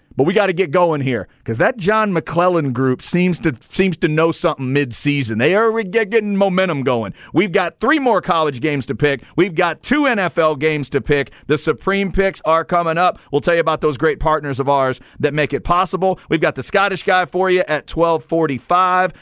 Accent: American